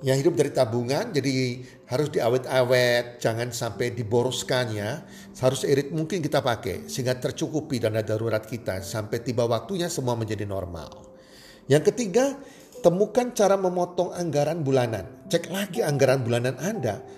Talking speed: 135 wpm